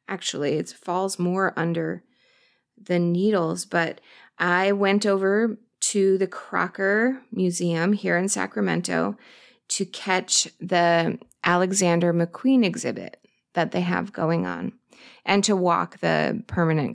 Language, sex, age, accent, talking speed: English, female, 20-39, American, 120 wpm